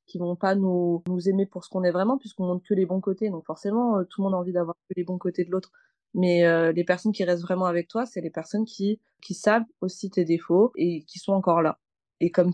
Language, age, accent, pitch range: French, 20-39, French, 175-200 Hz